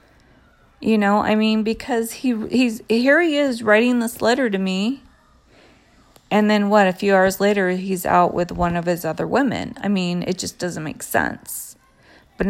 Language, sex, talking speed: English, female, 185 wpm